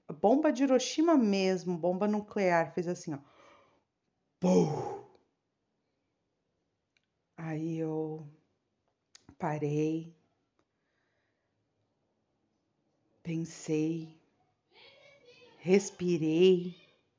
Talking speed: 50 wpm